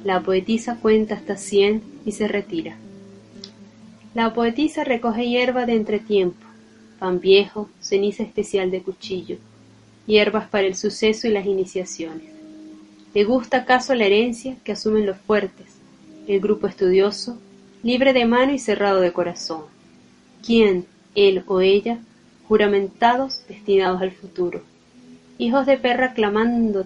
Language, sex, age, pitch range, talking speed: Spanish, female, 20-39, 185-225 Hz, 130 wpm